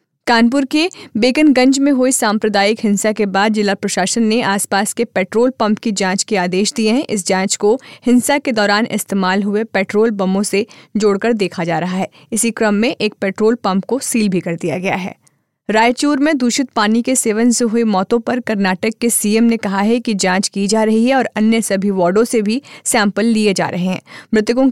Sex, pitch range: female, 200-235 Hz